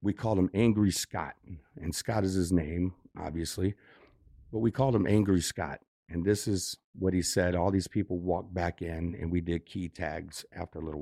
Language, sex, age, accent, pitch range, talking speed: English, male, 50-69, American, 85-110 Hz, 200 wpm